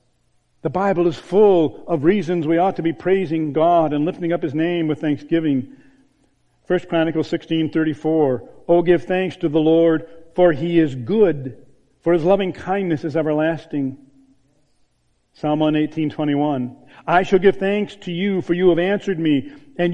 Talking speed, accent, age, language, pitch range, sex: 155 wpm, American, 50-69, English, 150-185 Hz, male